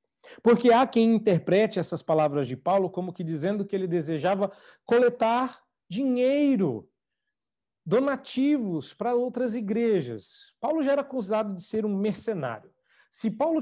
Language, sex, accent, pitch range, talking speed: Portuguese, male, Brazilian, 170-235 Hz, 130 wpm